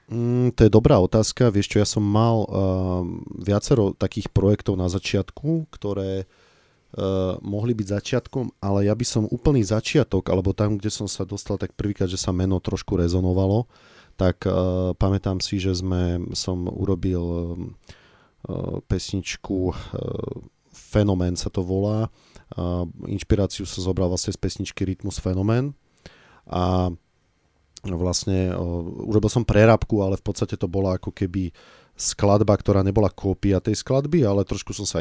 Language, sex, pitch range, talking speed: Slovak, male, 90-105 Hz, 150 wpm